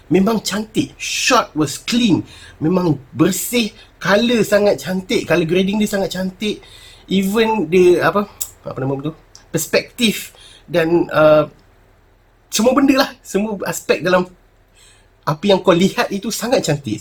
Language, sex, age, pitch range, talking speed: Malay, male, 30-49, 125-205 Hz, 130 wpm